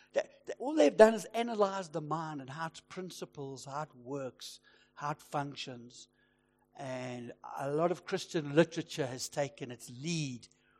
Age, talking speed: 60-79, 160 wpm